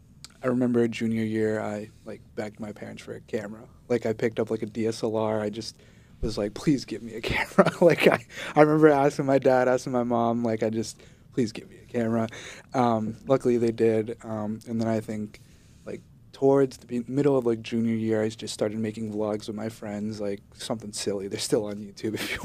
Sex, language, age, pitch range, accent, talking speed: male, English, 20-39, 110-125 Hz, American, 215 wpm